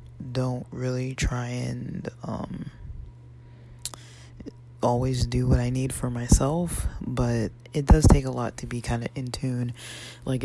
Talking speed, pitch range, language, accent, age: 145 wpm, 120-130 Hz, English, American, 20-39